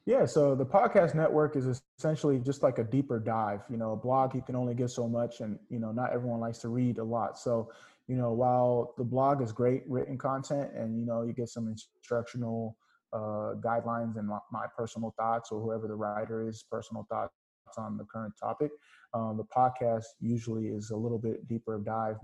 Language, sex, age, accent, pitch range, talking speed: English, male, 20-39, American, 110-125 Hz, 210 wpm